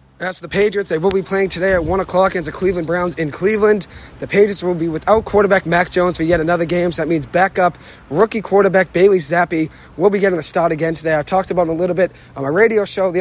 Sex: male